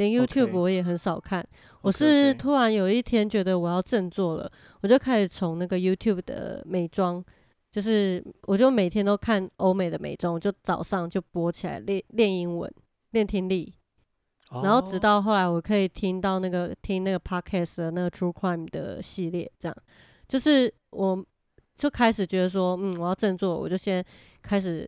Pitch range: 175-210 Hz